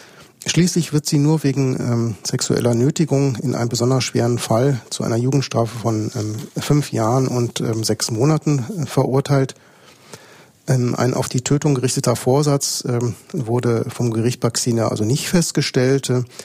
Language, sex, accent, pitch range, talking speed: German, male, German, 120-140 Hz, 155 wpm